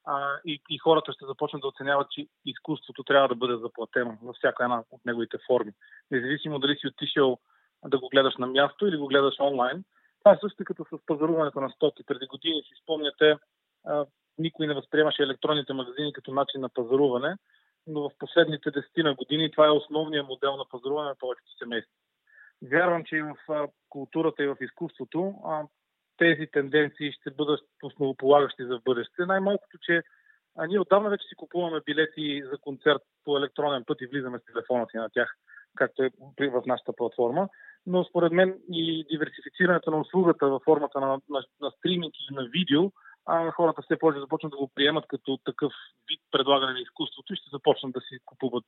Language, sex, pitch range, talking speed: Bulgarian, male, 135-160 Hz, 180 wpm